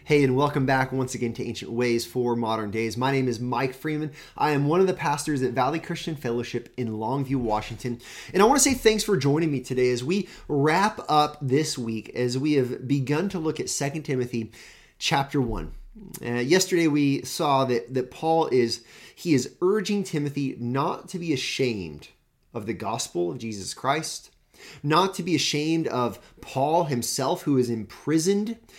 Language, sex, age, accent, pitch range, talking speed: English, male, 30-49, American, 120-170 Hz, 185 wpm